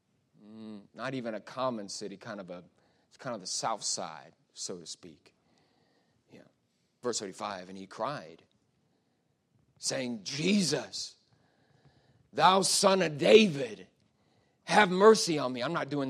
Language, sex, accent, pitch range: English, male, American, 105-155 Hz